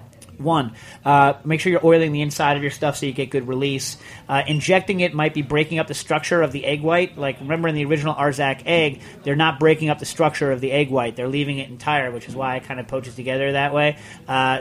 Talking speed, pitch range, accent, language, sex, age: 250 wpm, 135-160 Hz, American, English, male, 40-59